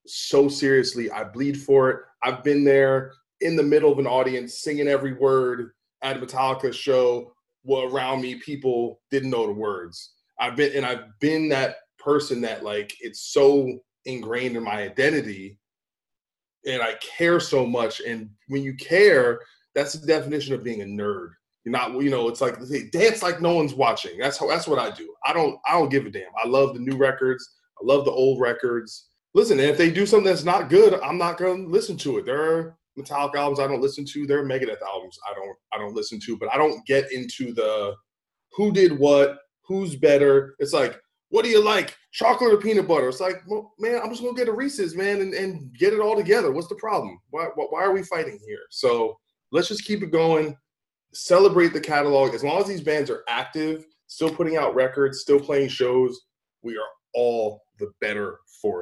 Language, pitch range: English, 130-195 Hz